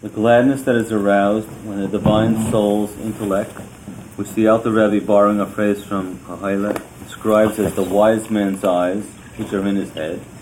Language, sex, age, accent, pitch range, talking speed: English, male, 40-59, American, 95-110 Hz, 165 wpm